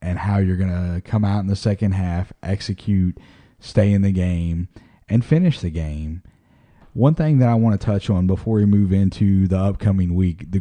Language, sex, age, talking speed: English, male, 30-49, 205 wpm